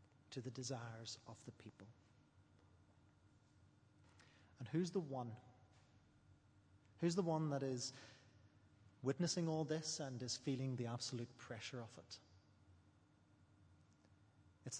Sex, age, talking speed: male, 30-49, 110 wpm